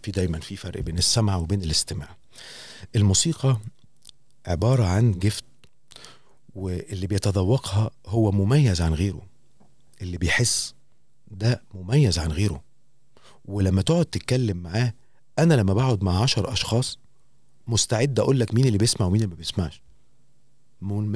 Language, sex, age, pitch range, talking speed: Arabic, male, 40-59, 100-145 Hz, 130 wpm